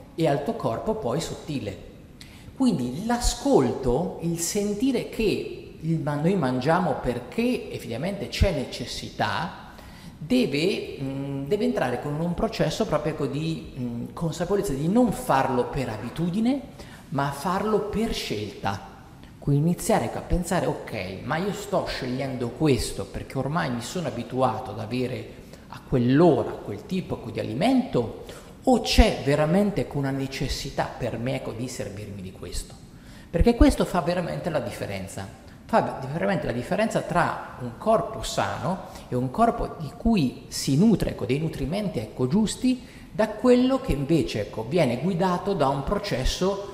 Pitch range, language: 125-200 Hz, Italian